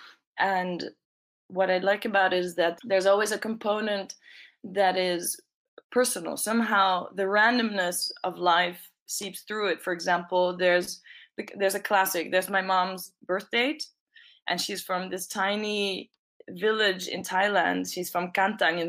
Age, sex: 20-39, female